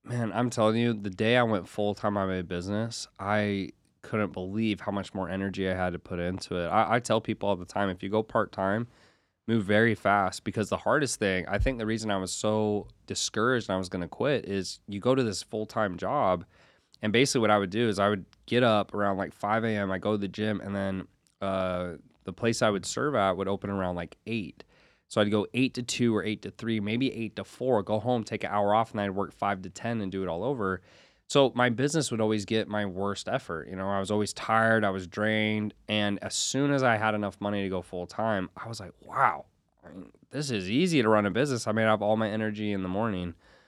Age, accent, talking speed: 20-39, American, 250 wpm